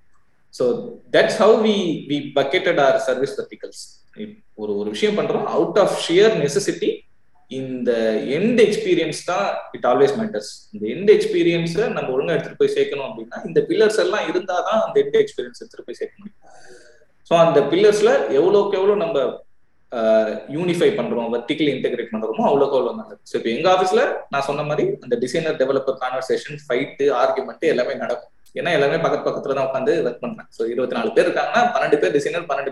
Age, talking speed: 20-39, 170 wpm